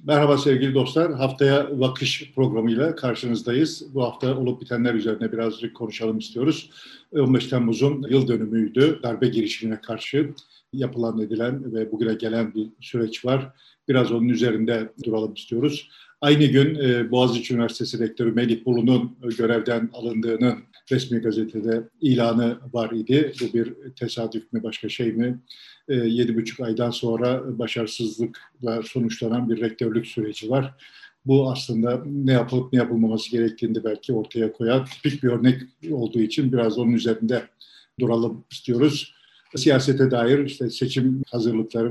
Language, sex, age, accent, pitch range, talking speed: Turkish, male, 50-69, native, 115-130 Hz, 130 wpm